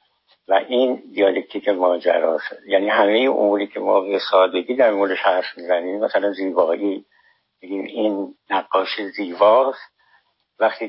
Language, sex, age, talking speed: Persian, male, 60-79, 120 wpm